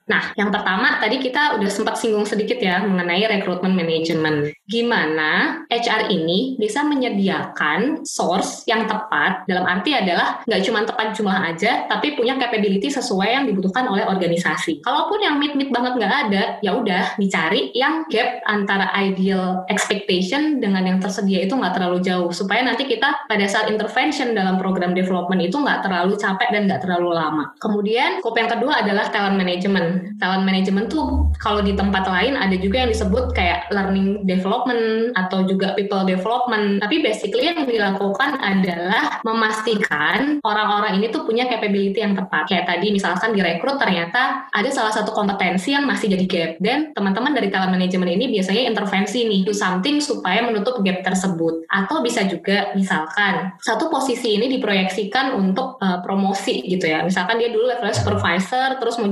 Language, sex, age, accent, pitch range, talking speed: Indonesian, female, 20-39, native, 185-230 Hz, 165 wpm